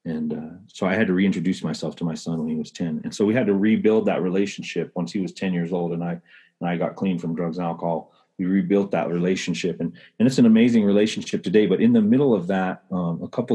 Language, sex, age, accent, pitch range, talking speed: English, male, 30-49, American, 85-130 Hz, 260 wpm